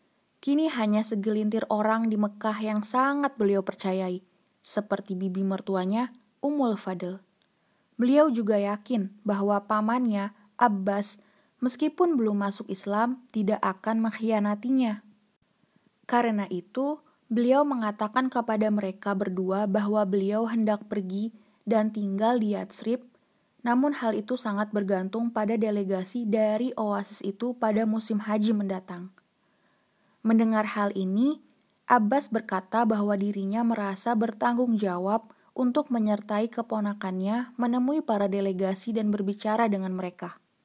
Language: Indonesian